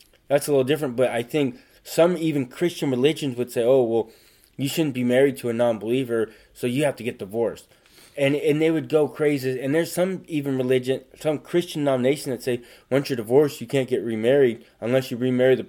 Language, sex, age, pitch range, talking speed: English, male, 20-39, 120-140 Hz, 210 wpm